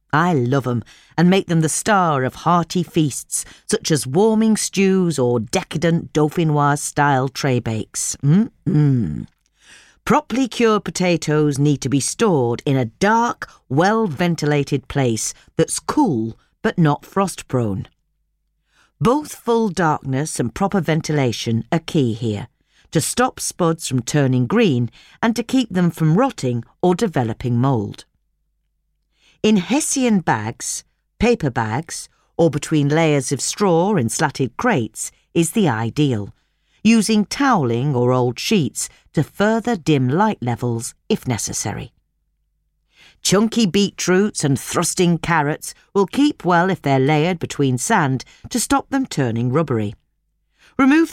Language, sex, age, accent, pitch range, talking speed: English, female, 40-59, British, 130-195 Hz, 130 wpm